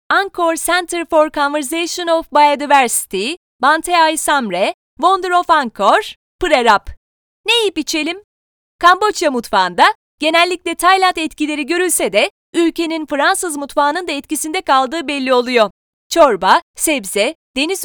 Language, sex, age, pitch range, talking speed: Turkish, female, 30-49, 285-355 Hz, 110 wpm